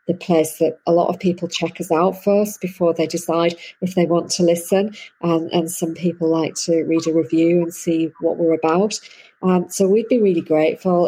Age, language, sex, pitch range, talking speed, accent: 40-59, English, female, 150-170 Hz, 210 wpm, British